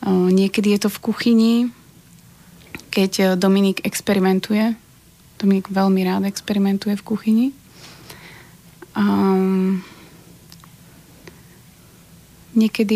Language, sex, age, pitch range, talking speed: Slovak, female, 30-49, 190-220 Hz, 75 wpm